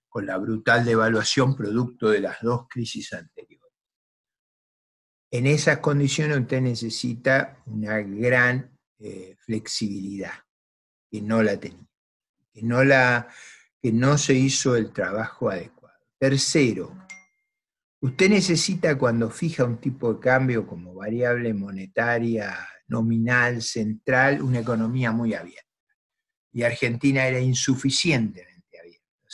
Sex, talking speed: male, 115 wpm